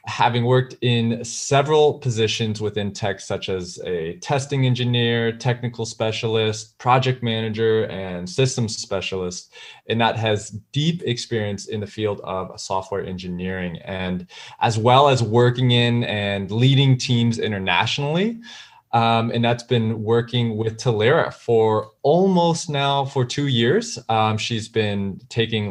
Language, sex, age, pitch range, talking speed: English, male, 20-39, 105-125 Hz, 135 wpm